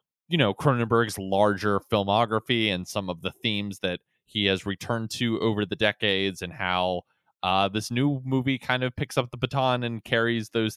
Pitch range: 95-115 Hz